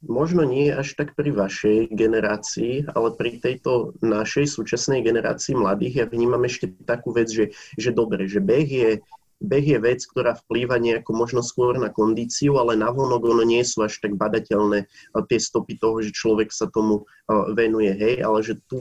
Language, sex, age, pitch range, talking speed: Slovak, male, 20-39, 110-125 Hz, 170 wpm